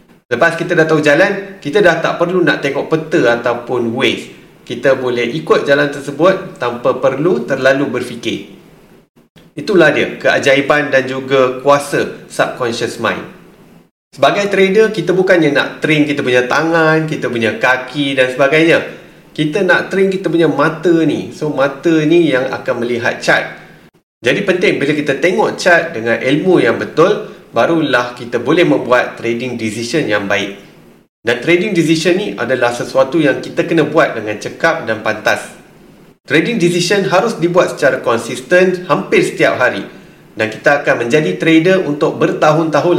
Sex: male